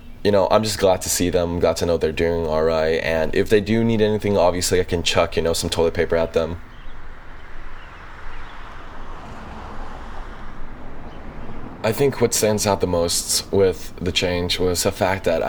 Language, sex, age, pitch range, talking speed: English, male, 20-39, 85-95 Hz, 175 wpm